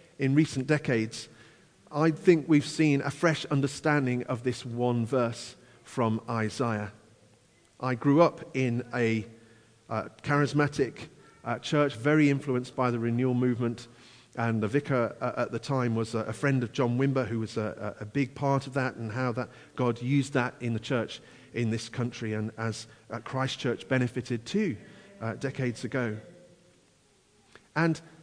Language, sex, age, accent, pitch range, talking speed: English, male, 40-59, British, 115-150 Hz, 160 wpm